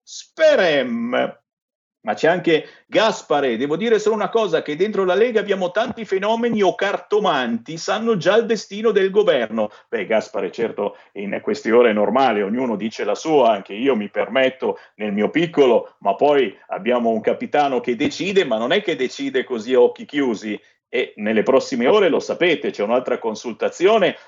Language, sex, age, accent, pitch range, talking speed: Italian, male, 50-69, native, 160-230 Hz, 170 wpm